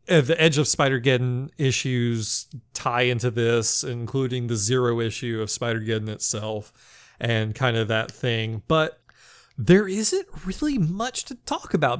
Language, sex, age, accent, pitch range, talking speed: English, male, 30-49, American, 115-165 Hz, 140 wpm